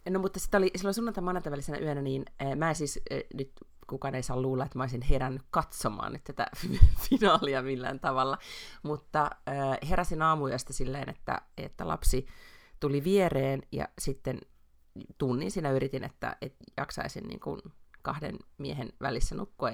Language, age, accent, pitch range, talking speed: Finnish, 30-49, native, 130-155 Hz, 150 wpm